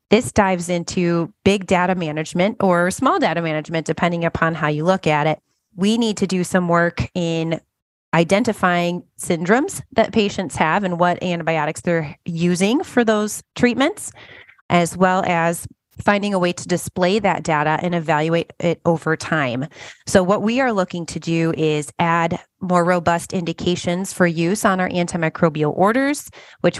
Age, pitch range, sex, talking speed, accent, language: 30-49, 160-185 Hz, female, 160 wpm, American, English